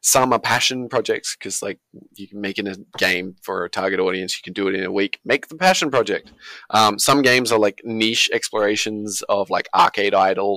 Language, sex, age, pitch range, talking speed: English, male, 20-39, 100-130 Hz, 220 wpm